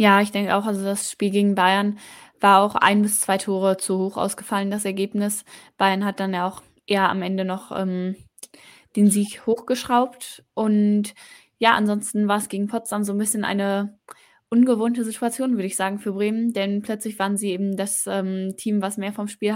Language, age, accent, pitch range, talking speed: German, 10-29, German, 190-210 Hz, 195 wpm